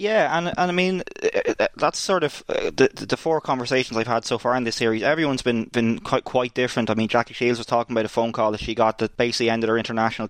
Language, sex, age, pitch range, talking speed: English, male, 20-39, 115-130 Hz, 250 wpm